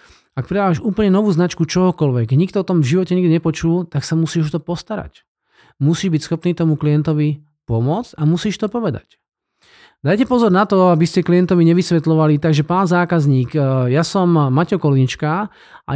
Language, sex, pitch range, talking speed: Slovak, male, 150-185 Hz, 170 wpm